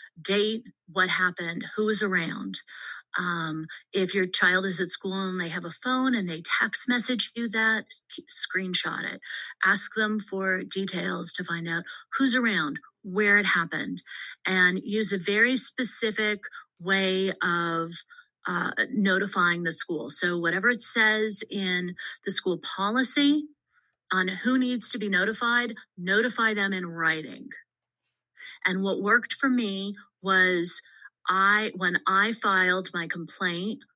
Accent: American